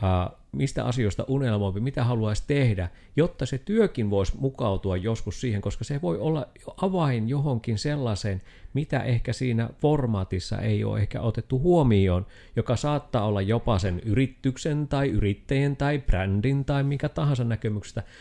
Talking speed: 145 wpm